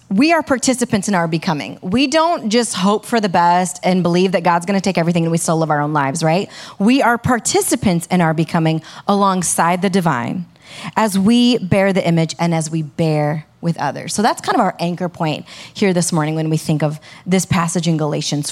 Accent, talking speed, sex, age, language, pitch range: American, 215 wpm, female, 30-49, English, 165-220 Hz